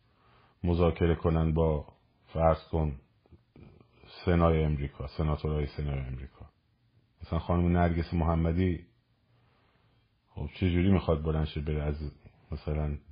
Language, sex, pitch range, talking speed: Persian, male, 80-110 Hz, 100 wpm